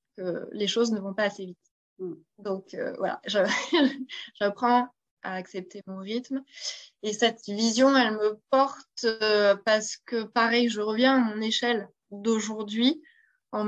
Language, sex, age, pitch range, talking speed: French, female, 20-39, 190-230 Hz, 150 wpm